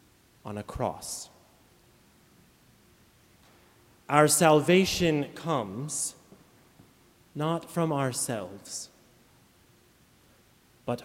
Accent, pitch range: American, 115-145 Hz